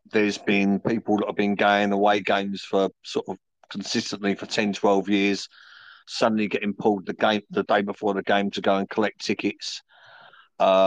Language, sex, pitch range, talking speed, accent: English, male, 95-105 Hz, 180 wpm, British